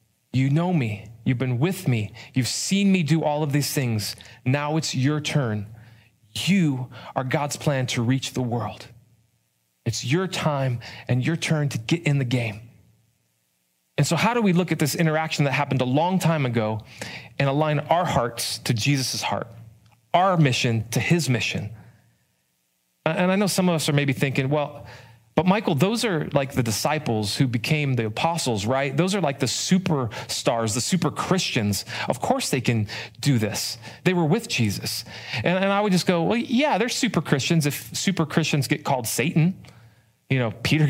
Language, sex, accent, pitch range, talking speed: English, male, American, 115-155 Hz, 185 wpm